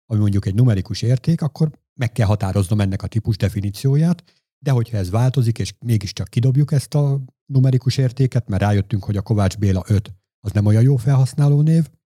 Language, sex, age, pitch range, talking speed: Hungarian, male, 50-69, 100-125 Hz, 180 wpm